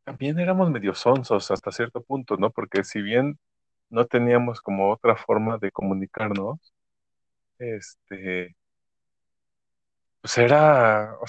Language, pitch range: Spanish, 100-130 Hz